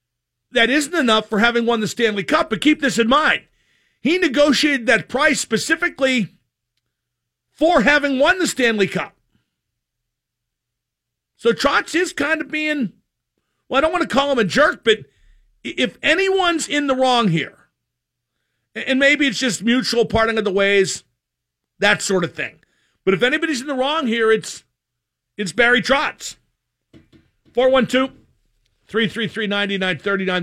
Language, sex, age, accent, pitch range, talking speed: English, male, 50-69, American, 180-265 Hz, 150 wpm